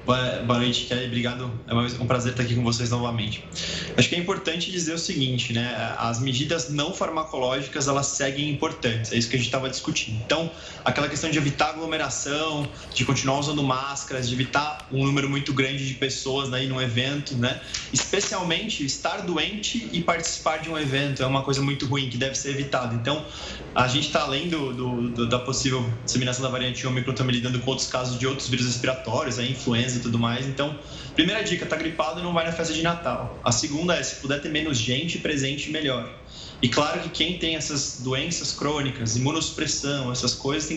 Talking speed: 200 wpm